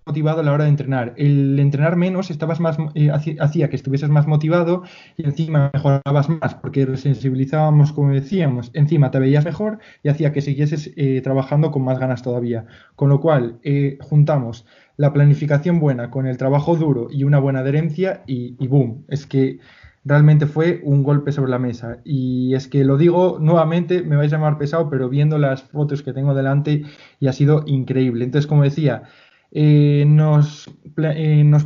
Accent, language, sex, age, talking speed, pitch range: Spanish, Spanish, male, 20-39, 180 wpm, 135-155 Hz